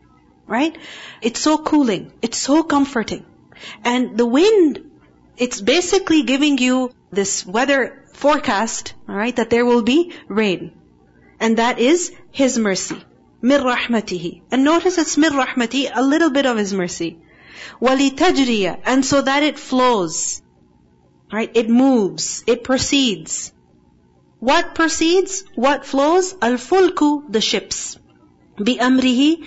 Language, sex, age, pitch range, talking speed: English, female, 40-59, 215-290 Hz, 125 wpm